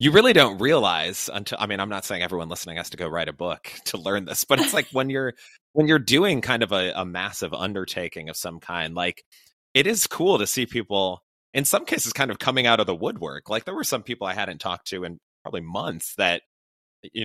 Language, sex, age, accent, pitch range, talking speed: English, male, 30-49, American, 85-115 Hz, 240 wpm